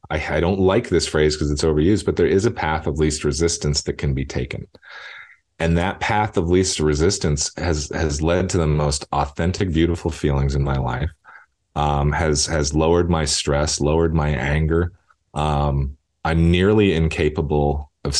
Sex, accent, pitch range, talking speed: male, American, 70-80 Hz, 170 wpm